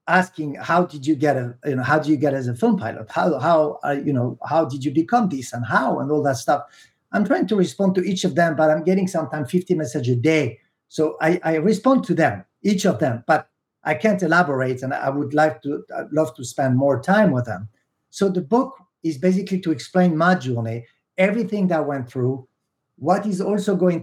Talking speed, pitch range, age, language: 225 wpm, 135-175 Hz, 50-69, English